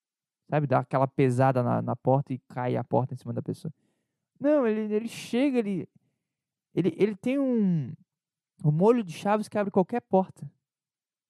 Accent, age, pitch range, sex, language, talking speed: Brazilian, 20-39, 150-200 Hz, male, Portuguese, 170 wpm